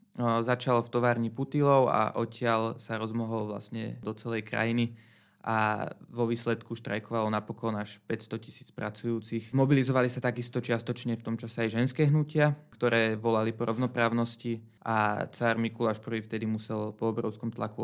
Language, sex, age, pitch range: Slovak, male, 20-39, 110-125 Hz